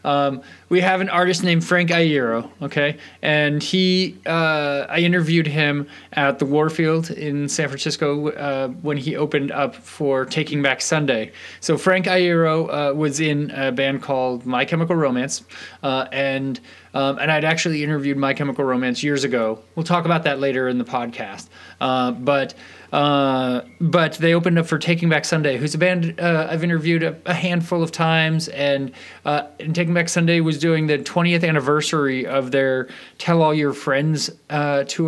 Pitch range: 140-165 Hz